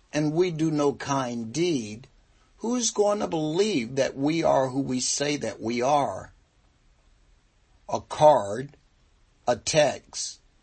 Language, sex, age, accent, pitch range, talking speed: English, male, 60-79, American, 115-150 Hz, 130 wpm